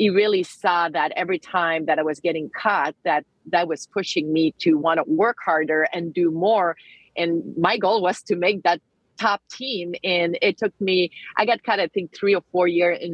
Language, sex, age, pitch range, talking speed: English, female, 40-59, 160-190 Hz, 215 wpm